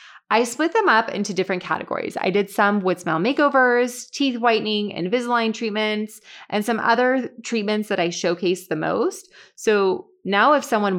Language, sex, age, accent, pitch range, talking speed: English, female, 20-39, American, 180-240 Hz, 165 wpm